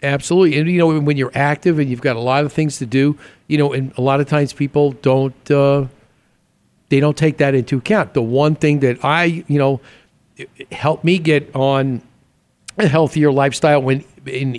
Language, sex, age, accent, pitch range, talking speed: English, male, 50-69, American, 135-165 Hz, 200 wpm